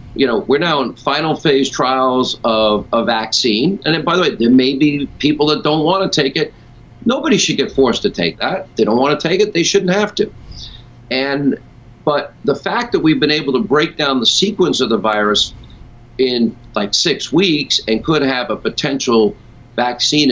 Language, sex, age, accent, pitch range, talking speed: English, male, 50-69, American, 115-150 Hz, 205 wpm